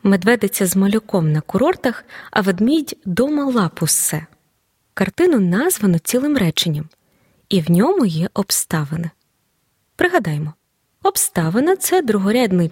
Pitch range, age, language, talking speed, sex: 180-265 Hz, 20-39, Ukrainian, 115 wpm, female